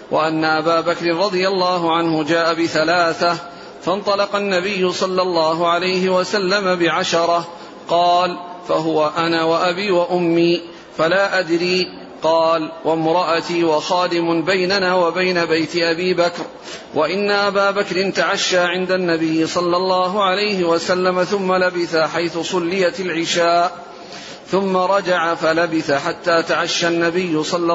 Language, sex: Arabic, male